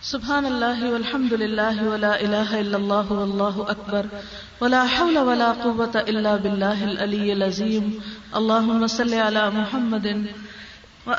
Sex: female